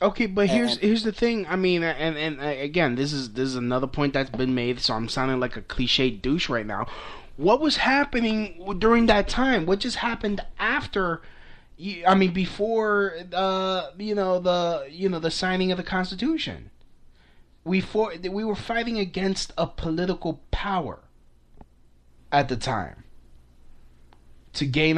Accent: American